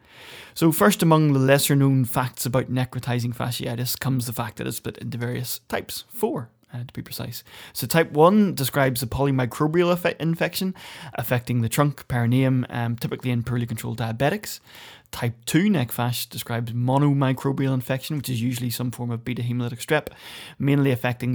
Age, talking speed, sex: 20-39, 165 wpm, male